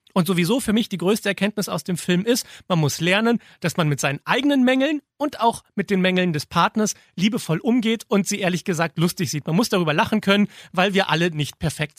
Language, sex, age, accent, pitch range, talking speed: German, male, 40-59, German, 155-210 Hz, 225 wpm